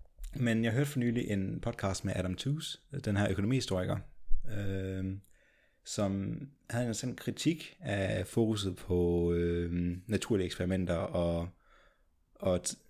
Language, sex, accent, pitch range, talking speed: Danish, male, native, 95-120 Hz, 125 wpm